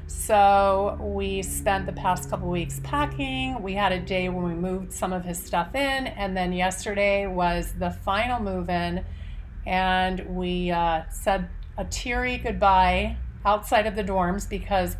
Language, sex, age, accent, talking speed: English, female, 30-49, American, 165 wpm